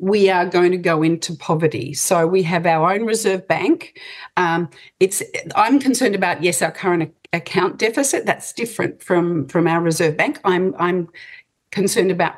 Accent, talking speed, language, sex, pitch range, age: Australian, 170 wpm, English, female, 170-205 Hz, 50-69